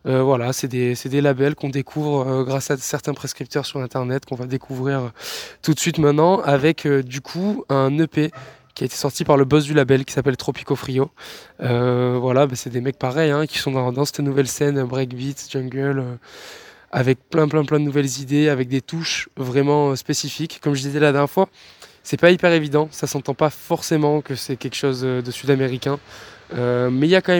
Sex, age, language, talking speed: male, 20-39, French, 215 wpm